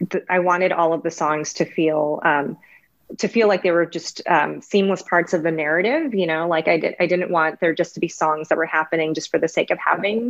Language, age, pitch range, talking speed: English, 30-49, 160-185 Hz, 245 wpm